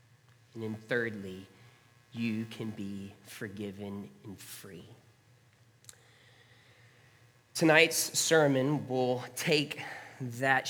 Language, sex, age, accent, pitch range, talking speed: English, male, 30-49, American, 115-140 Hz, 80 wpm